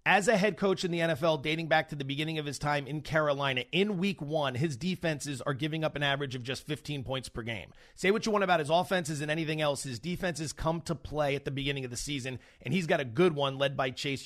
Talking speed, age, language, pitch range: 265 wpm, 30-49, English, 145-180 Hz